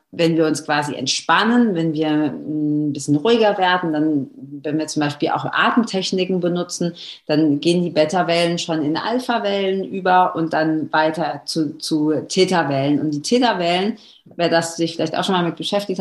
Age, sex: 40-59, female